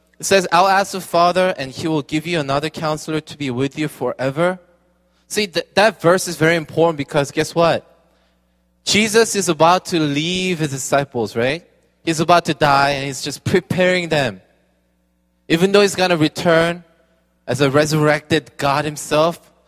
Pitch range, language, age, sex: 145-180 Hz, Korean, 20-39, male